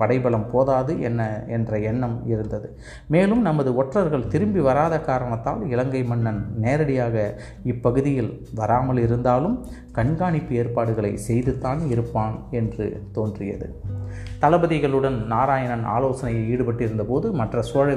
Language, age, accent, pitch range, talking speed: Tamil, 30-49, native, 110-135 Hz, 100 wpm